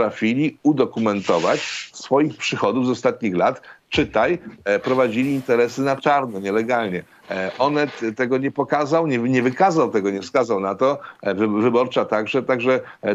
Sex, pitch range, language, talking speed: male, 105-130 Hz, Polish, 150 wpm